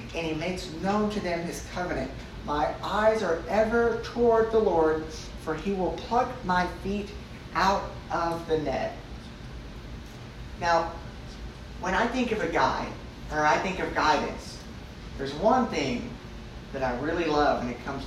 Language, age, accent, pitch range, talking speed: English, 40-59, American, 140-195 Hz, 155 wpm